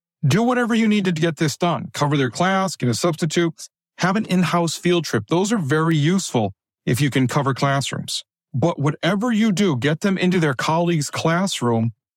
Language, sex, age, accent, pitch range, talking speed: English, male, 40-59, American, 130-175 Hz, 185 wpm